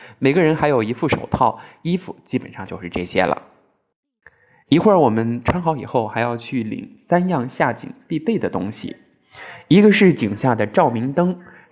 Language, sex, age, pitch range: Chinese, male, 20-39, 115-170 Hz